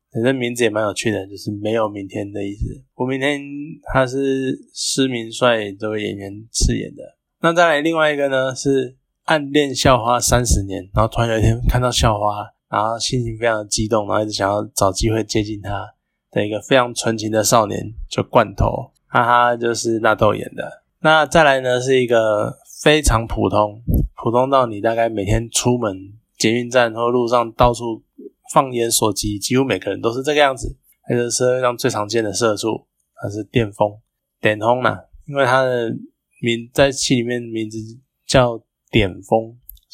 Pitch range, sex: 110-130 Hz, male